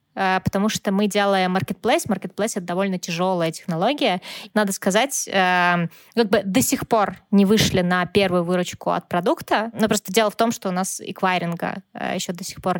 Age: 20-39